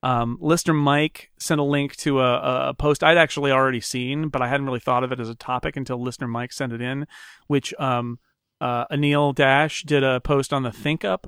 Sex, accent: male, American